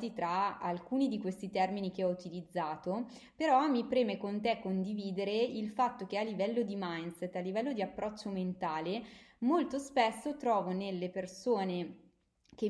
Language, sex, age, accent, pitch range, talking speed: Italian, female, 20-39, native, 185-240 Hz, 150 wpm